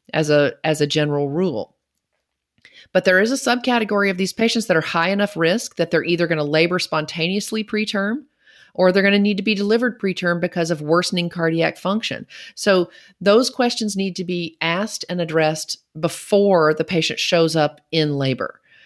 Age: 40-59